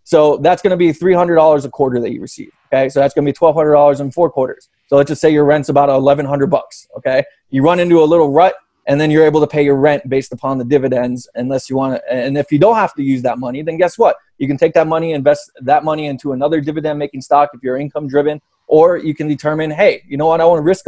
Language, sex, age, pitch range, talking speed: English, male, 20-39, 135-160 Hz, 265 wpm